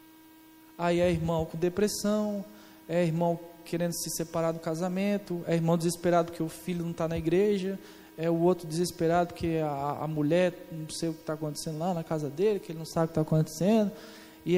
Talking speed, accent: 200 wpm, Brazilian